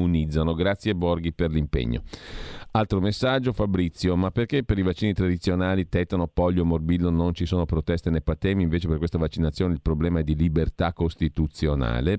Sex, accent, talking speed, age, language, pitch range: male, native, 160 wpm, 40-59, Italian, 85-110 Hz